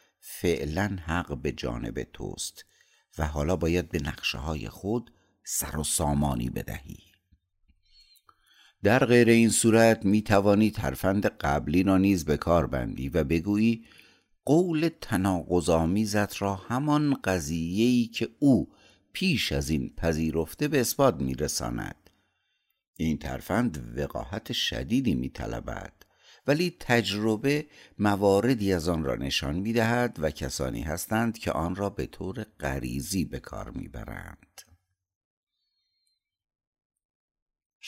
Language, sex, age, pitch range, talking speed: Persian, male, 60-79, 80-110 Hz, 110 wpm